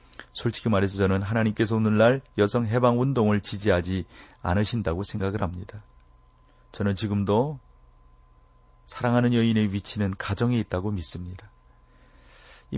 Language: Korean